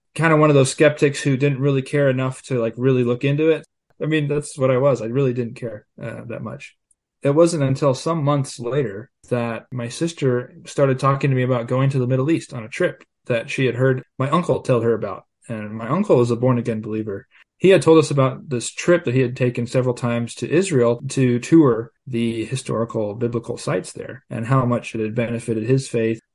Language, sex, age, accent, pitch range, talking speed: English, male, 20-39, American, 115-145 Hz, 225 wpm